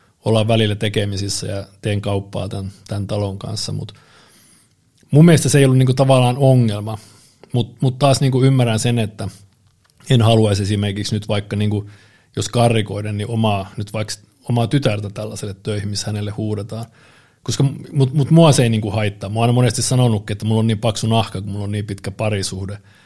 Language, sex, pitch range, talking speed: Finnish, male, 105-130 Hz, 175 wpm